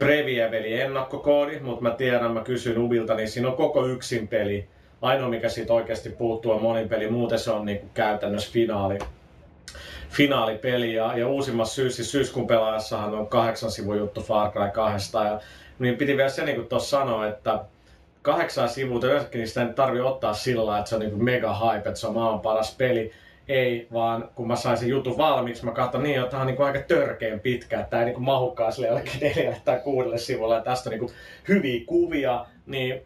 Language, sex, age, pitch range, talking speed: Finnish, male, 30-49, 110-130 Hz, 200 wpm